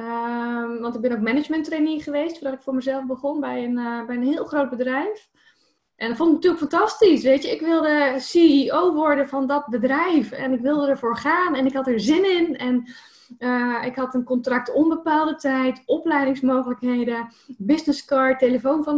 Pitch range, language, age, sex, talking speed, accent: 225-285 Hz, Dutch, 10-29, female, 180 wpm, Dutch